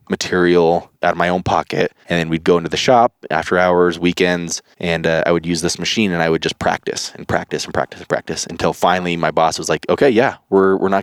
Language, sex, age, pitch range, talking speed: English, male, 20-39, 80-95 Hz, 245 wpm